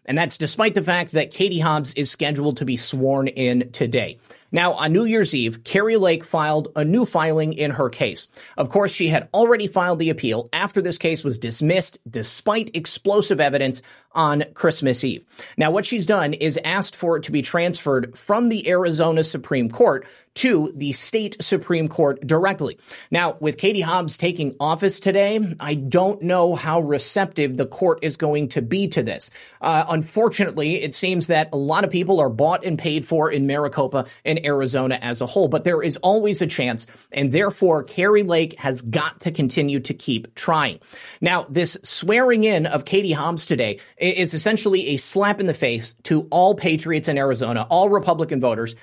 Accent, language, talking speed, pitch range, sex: American, English, 185 wpm, 140-185 Hz, male